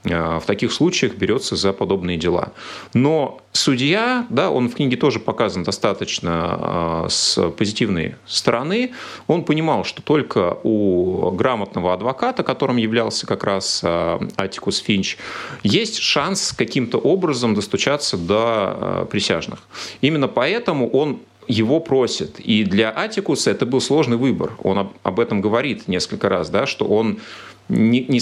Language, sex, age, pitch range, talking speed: Russian, male, 30-49, 100-140 Hz, 130 wpm